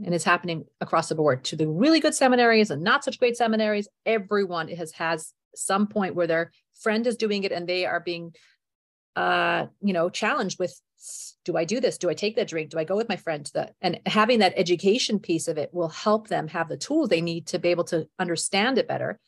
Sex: female